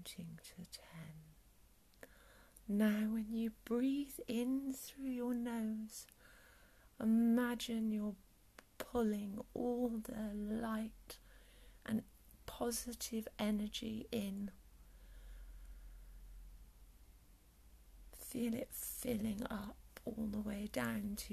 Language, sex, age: English, female, 40-59